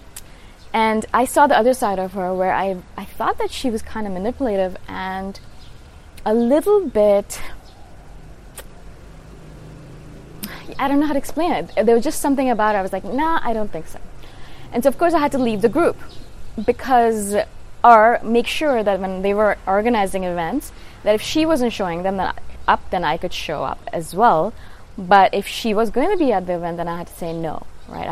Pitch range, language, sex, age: 185-250 Hz, English, female, 20-39